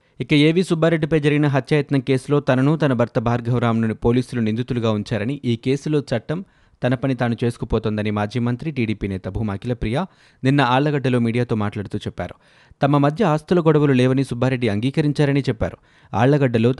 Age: 30-49